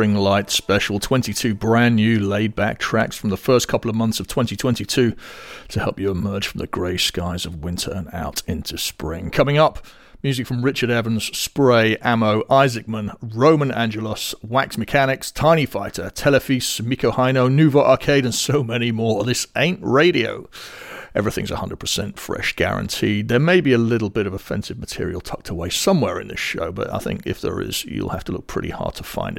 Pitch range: 100-125 Hz